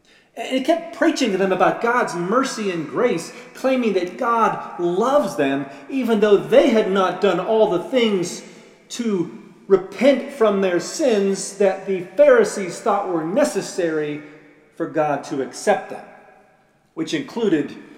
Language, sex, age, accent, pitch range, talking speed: English, male, 40-59, American, 135-195 Hz, 145 wpm